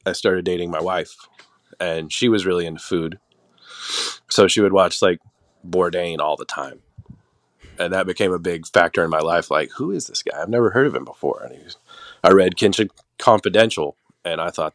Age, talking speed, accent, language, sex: 30-49, 205 wpm, American, English, male